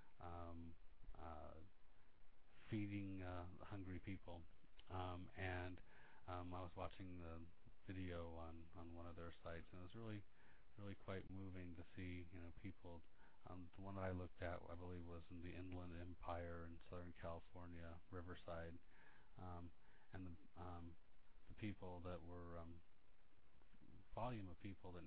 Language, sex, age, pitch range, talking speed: English, male, 40-59, 85-95 Hz, 150 wpm